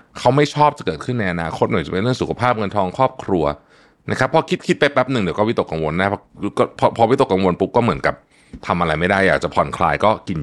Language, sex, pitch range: Thai, male, 90-130 Hz